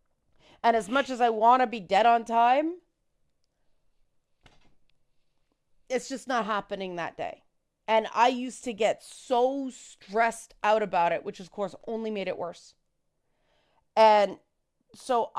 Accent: American